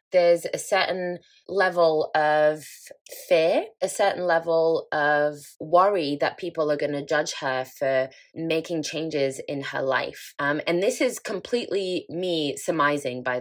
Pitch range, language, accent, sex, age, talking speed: 145-195 Hz, English, British, female, 20-39, 145 wpm